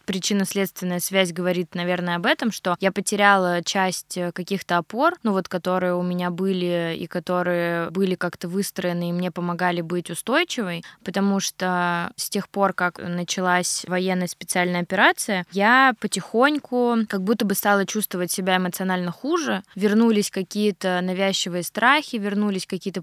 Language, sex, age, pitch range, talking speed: Russian, female, 20-39, 180-205 Hz, 140 wpm